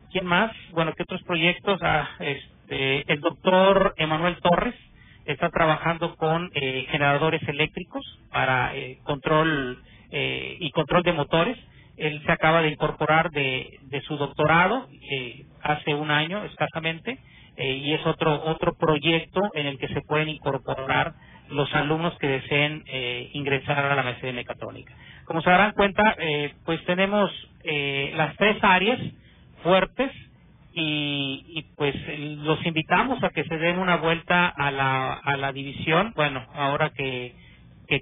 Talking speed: 150 wpm